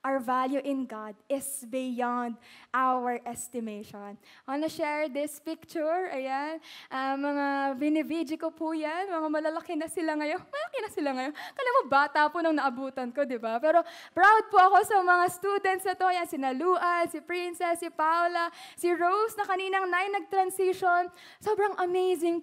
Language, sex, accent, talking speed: Filipino, female, native, 165 wpm